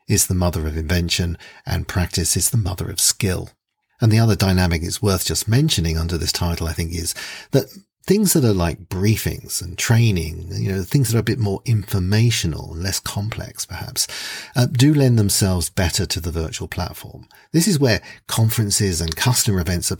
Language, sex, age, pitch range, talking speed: English, male, 40-59, 90-110 Hz, 190 wpm